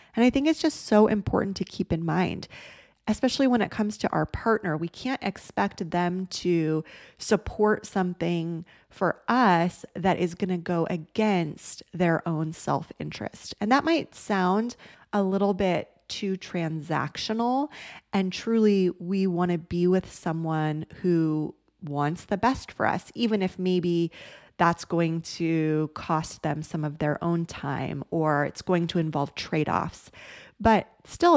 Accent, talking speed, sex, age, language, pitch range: American, 155 wpm, female, 20-39, English, 165-205 Hz